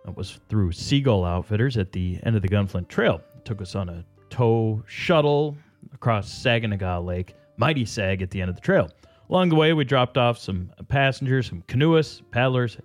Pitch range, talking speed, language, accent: 95-135 Hz, 190 wpm, English, American